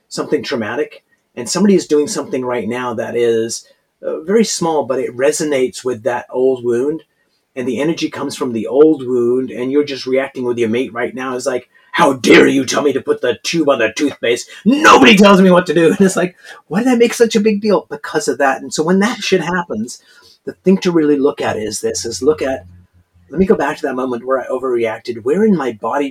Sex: male